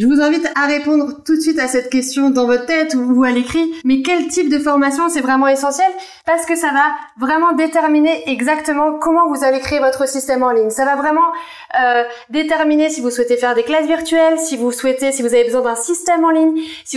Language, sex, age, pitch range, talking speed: French, female, 30-49, 250-320 Hz, 225 wpm